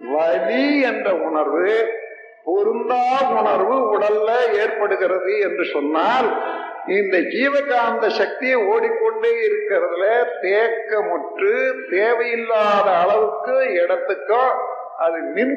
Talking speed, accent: 80 wpm, native